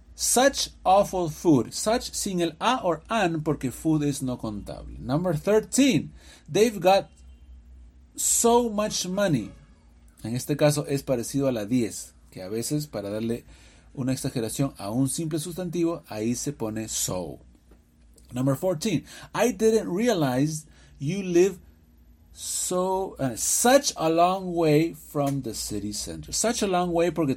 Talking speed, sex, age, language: 145 wpm, male, 40-59, English